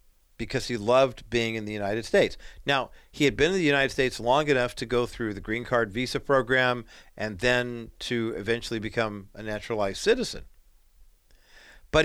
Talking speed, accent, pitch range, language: 175 wpm, American, 110-135 Hz, English